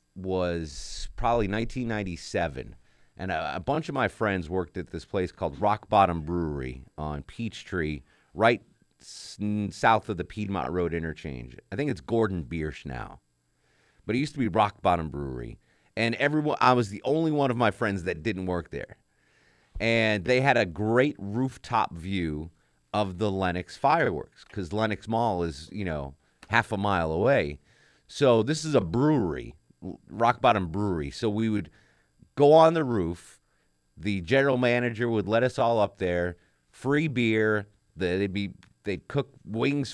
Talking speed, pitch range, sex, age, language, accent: 165 wpm, 85-120 Hz, male, 30-49, English, American